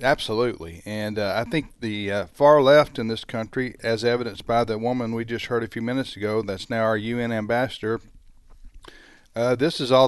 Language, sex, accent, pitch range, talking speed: English, male, American, 105-130 Hz, 195 wpm